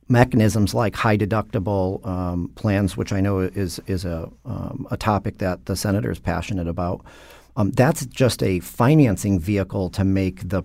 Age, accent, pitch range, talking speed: 40-59, American, 90-110 Hz, 170 wpm